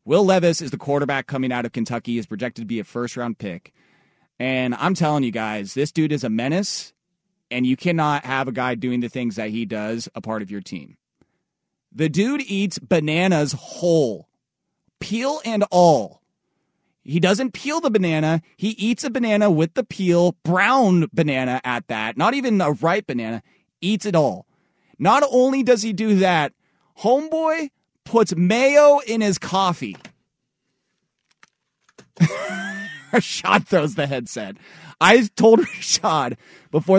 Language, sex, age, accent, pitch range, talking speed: English, male, 30-49, American, 135-200 Hz, 155 wpm